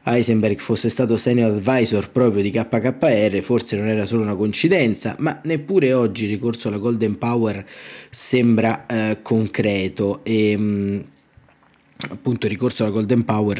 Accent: native